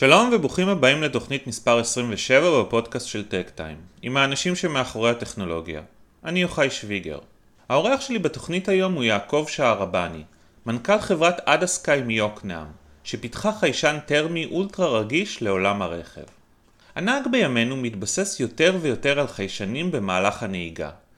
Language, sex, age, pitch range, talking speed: Hebrew, male, 30-49, 105-160 Hz, 125 wpm